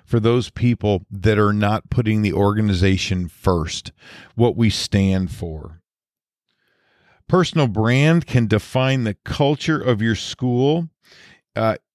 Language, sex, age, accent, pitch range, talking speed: English, male, 40-59, American, 105-135 Hz, 120 wpm